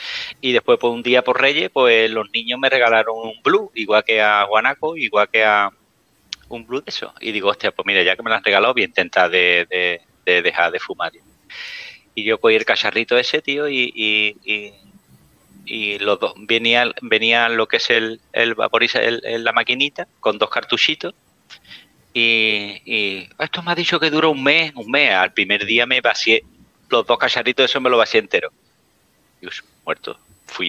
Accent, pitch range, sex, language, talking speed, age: Spanish, 110-140 Hz, male, Spanish, 200 wpm, 30-49